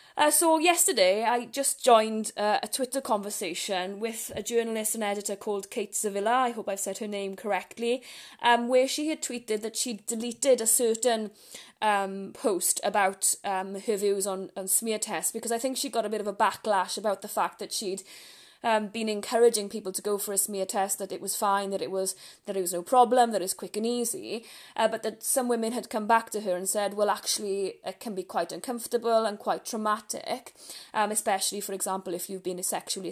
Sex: female